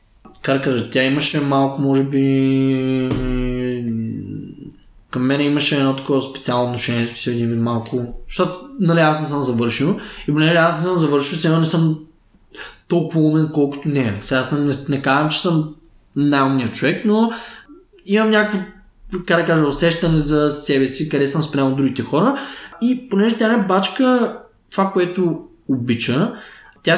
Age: 20-39